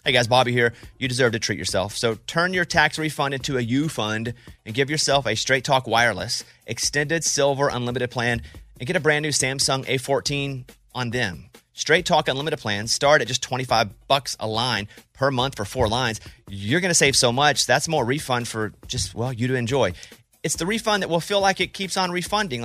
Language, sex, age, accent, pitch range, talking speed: English, male, 30-49, American, 120-165 Hz, 205 wpm